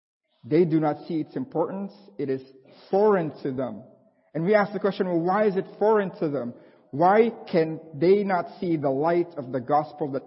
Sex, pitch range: male, 145-205 Hz